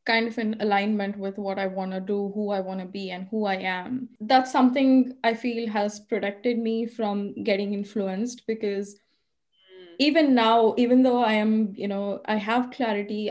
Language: English